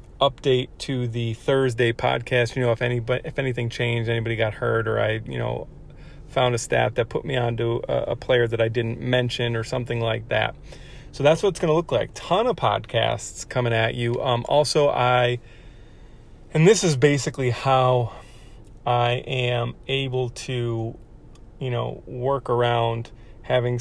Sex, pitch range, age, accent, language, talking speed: male, 115-130 Hz, 30-49, American, English, 170 wpm